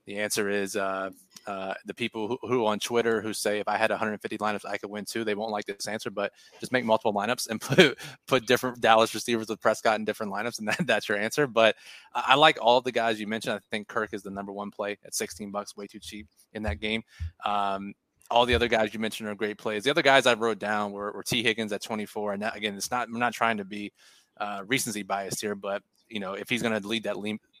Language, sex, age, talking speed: English, male, 20-39, 260 wpm